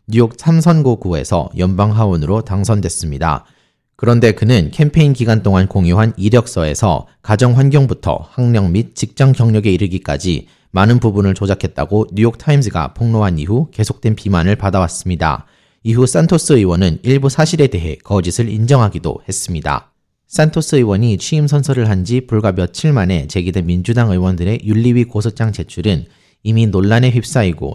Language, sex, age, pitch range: Korean, male, 30-49, 95-125 Hz